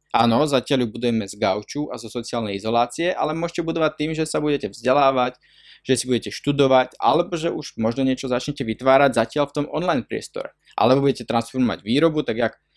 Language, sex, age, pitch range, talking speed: Slovak, male, 20-39, 115-145 Hz, 190 wpm